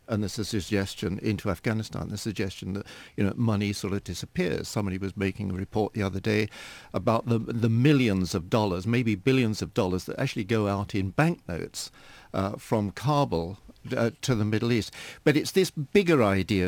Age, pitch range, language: 60-79, 100-130 Hz, English